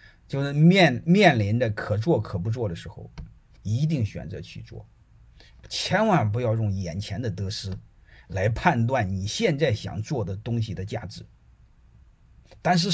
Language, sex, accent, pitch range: Chinese, male, native, 105-165 Hz